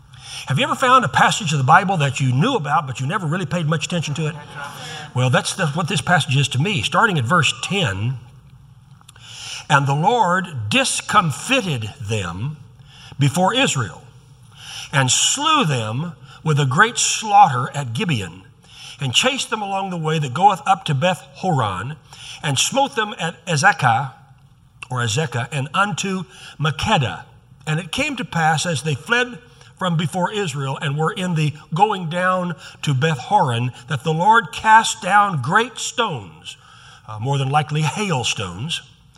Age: 60-79